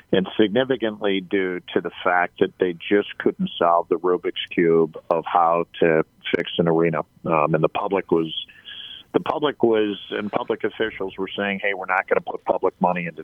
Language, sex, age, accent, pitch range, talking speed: English, male, 50-69, American, 95-110 Hz, 190 wpm